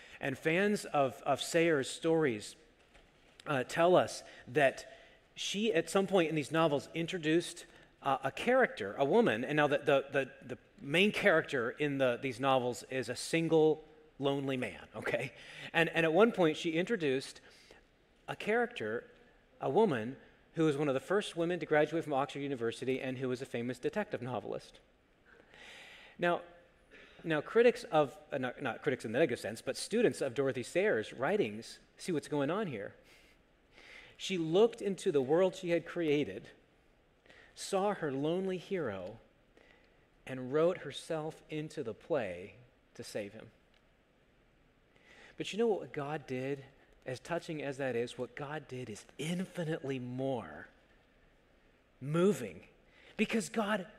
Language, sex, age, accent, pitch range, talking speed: English, male, 40-59, American, 140-185 Hz, 145 wpm